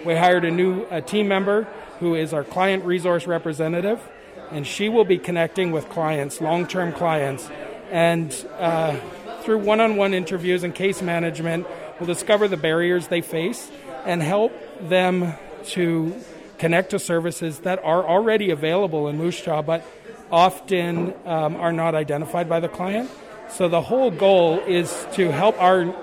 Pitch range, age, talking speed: 165-190 Hz, 40-59, 150 wpm